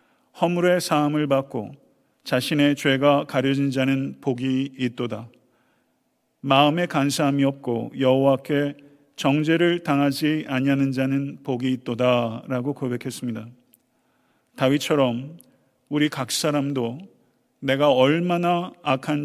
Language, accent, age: Korean, native, 40-59